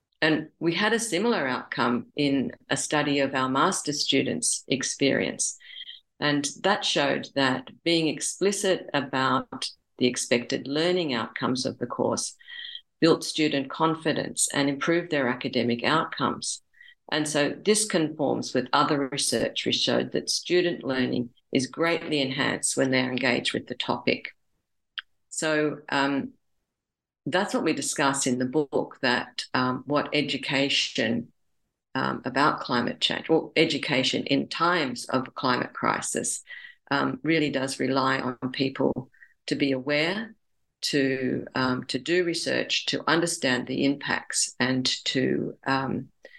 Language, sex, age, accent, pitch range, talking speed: English, female, 50-69, Australian, 130-155 Hz, 130 wpm